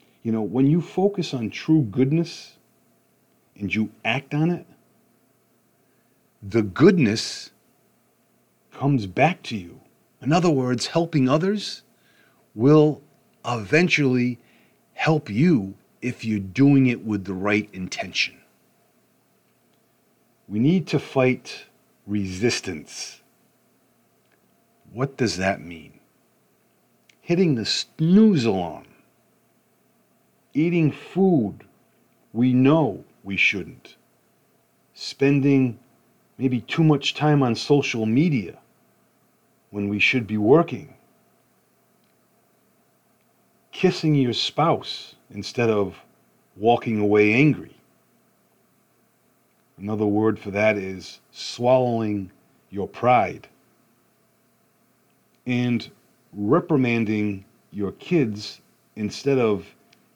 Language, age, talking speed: English, 40-59, 90 wpm